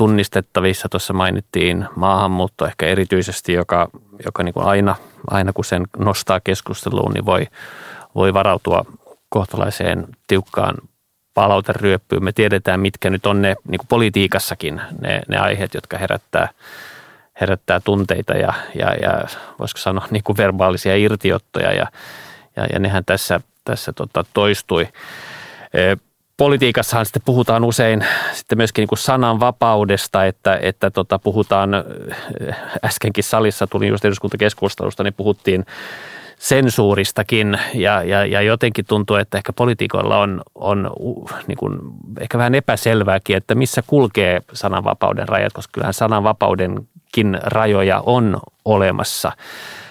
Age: 30-49